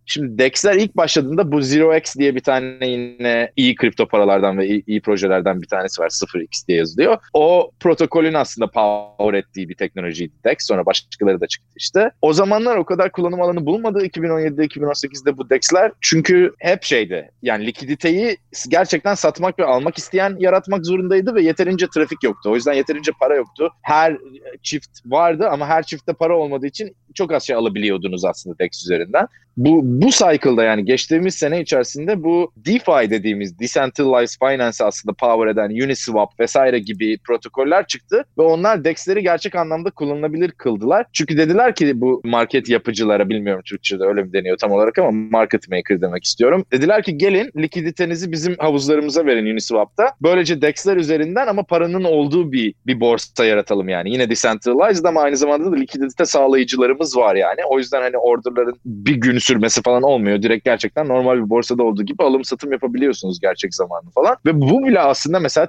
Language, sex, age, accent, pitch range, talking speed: Turkish, male, 30-49, native, 115-170 Hz, 170 wpm